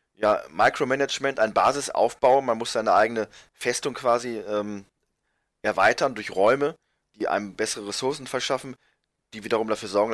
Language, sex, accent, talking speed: German, male, German, 135 wpm